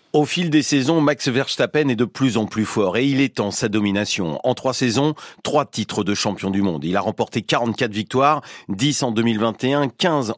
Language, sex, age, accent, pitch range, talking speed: French, male, 40-59, French, 110-135 Hz, 200 wpm